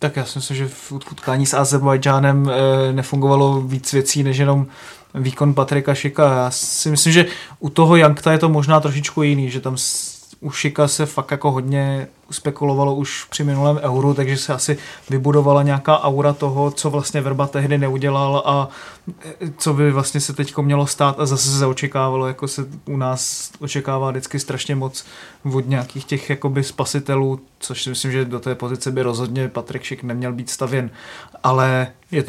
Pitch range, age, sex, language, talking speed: 135-150 Hz, 20-39, male, Czech, 175 wpm